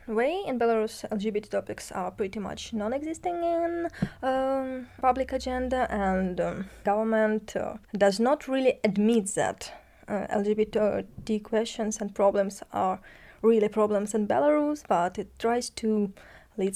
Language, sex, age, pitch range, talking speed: German, female, 20-39, 205-255 Hz, 135 wpm